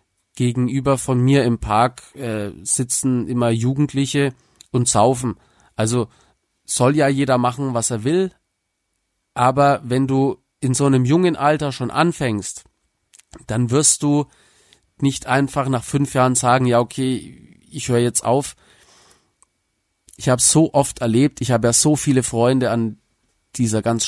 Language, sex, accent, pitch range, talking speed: German, male, German, 110-135 Hz, 145 wpm